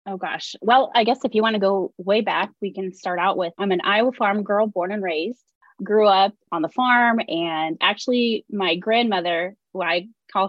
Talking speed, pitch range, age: 210 wpm, 180-220 Hz, 20-39